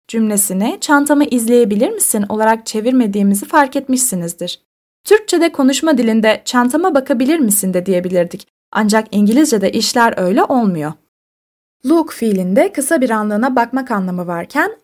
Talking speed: 115 wpm